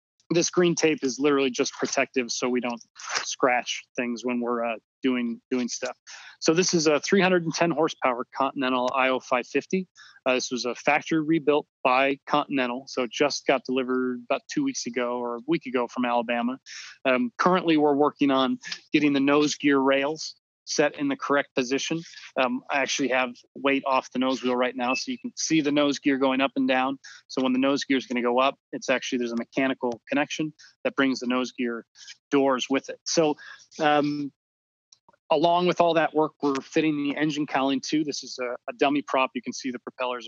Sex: male